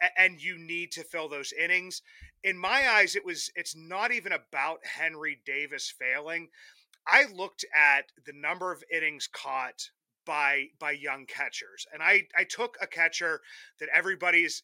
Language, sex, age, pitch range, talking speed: English, male, 30-49, 150-200 Hz, 160 wpm